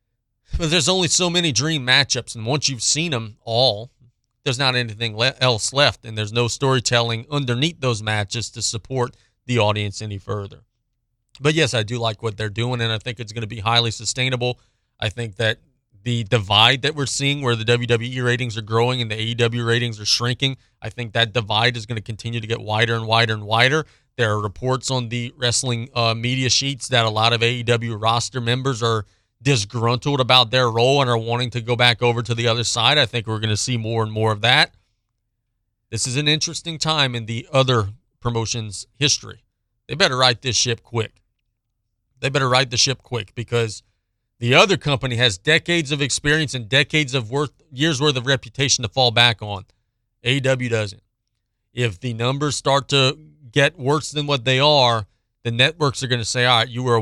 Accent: American